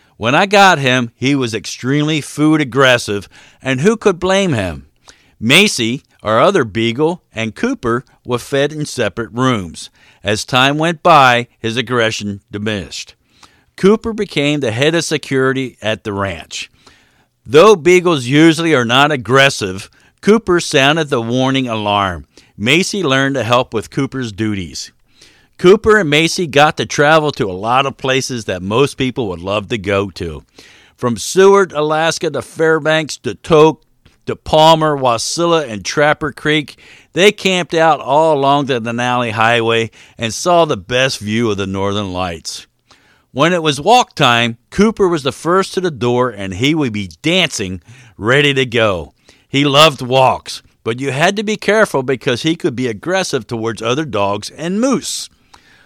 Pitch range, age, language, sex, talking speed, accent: 115-160 Hz, 50-69, English, male, 160 wpm, American